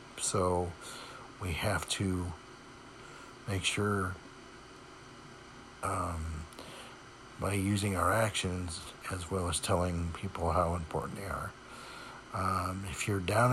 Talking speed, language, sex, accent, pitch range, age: 105 wpm, English, male, American, 95-115 Hz, 60-79